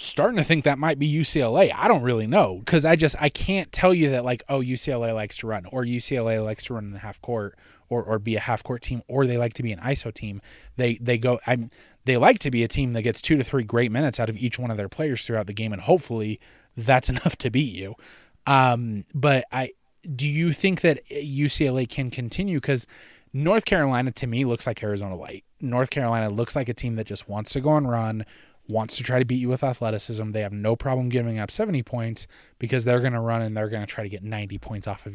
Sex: male